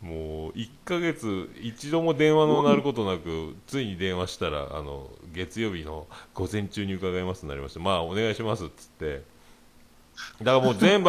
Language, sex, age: Japanese, male, 40-59